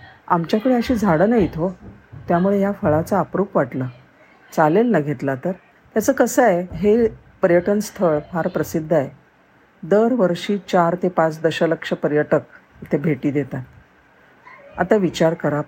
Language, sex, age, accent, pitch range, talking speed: Marathi, female, 50-69, native, 155-200 Hz, 135 wpm